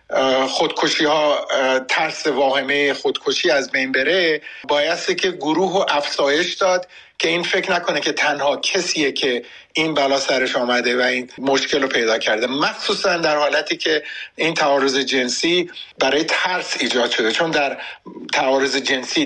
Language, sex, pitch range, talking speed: Persian, male, 140-190 Hz, 140 wpm